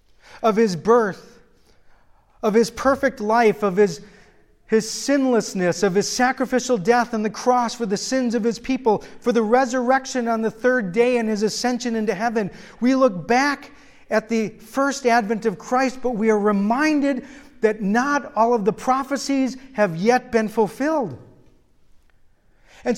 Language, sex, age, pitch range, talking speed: English, male, 40-59, 210-260 Hz, 155 wpm